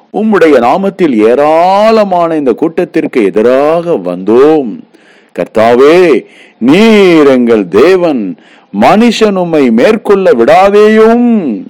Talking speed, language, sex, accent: 70 wpm, English, male, Indian